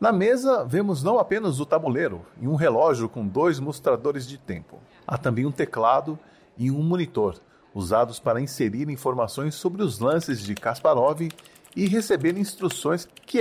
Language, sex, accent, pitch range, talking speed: Portuguese, male, Brazilian, 125-180 Hz, 155 wpm